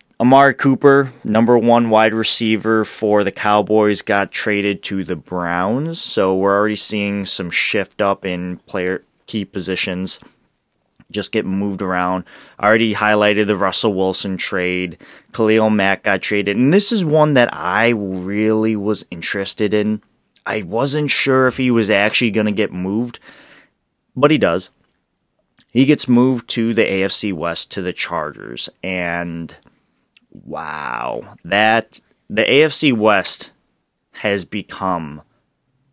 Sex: male